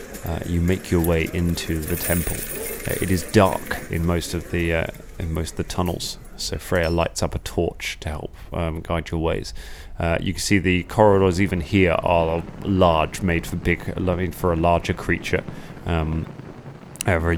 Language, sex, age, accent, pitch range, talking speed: English, male, 30-49, British, 85-90 Hz, 185 wpm